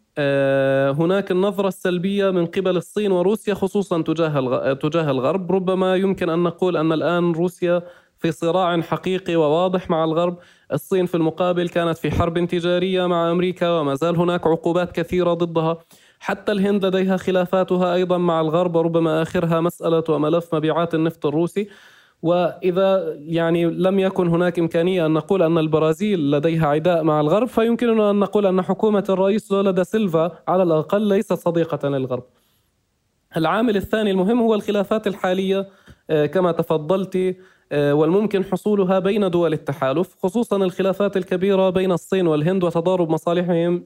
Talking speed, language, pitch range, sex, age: 140 wpm, Arabic, 165-195 Hz, male, 20-39